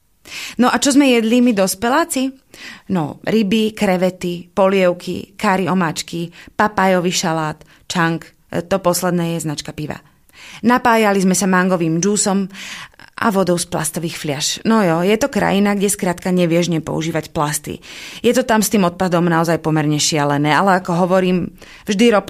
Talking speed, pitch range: 150 wpm, 170-215 Hz